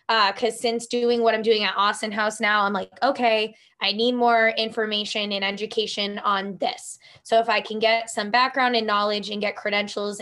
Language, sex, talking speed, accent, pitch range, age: English, female, 200 wpm, American, 205-235 Hz, 20-39